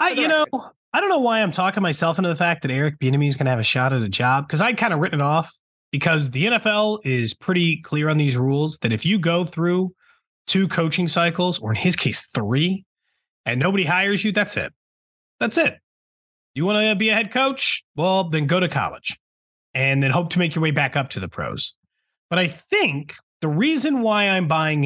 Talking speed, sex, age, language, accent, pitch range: 230 wpm, male, 30-49, English, American, 145-205 Hz